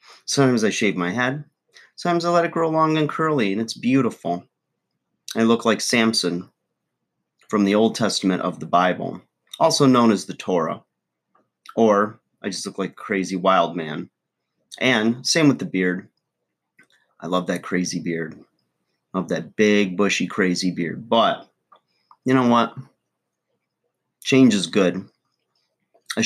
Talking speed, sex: 150 wpm, male